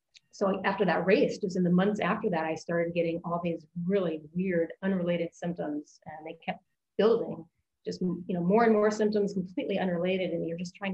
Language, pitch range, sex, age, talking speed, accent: English, 165-190 Hz, female, 30-49, 195 wpm, American